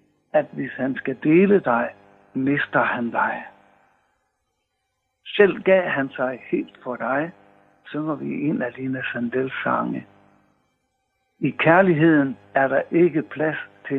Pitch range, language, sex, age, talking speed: 120-160 Hz, Danish, male, 60-79, 130 wpm